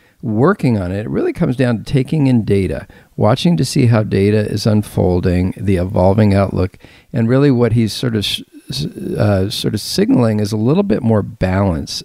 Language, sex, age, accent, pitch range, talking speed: English, male, 50-69, American, 100-120 Hz, 185 wpm